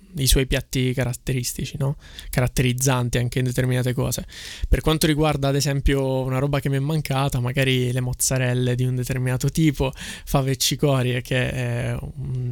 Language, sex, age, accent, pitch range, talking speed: Italian, male, 20-39, native, 125-145 Hz, 160 wpm